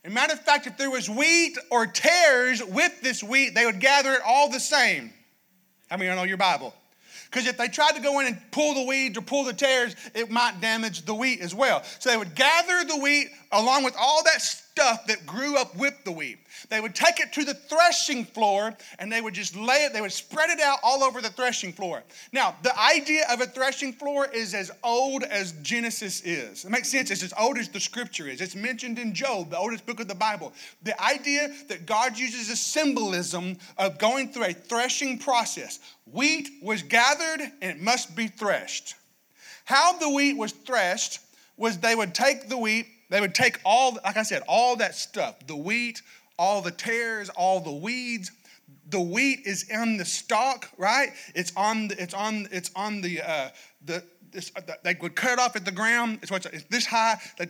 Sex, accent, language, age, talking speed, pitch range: male, American, English, 30-49, 215 wpm, 200-270 Hz